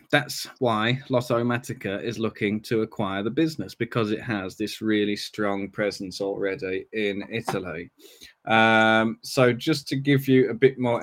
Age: 20-39